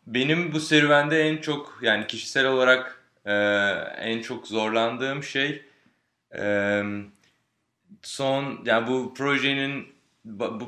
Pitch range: 110-140 Hz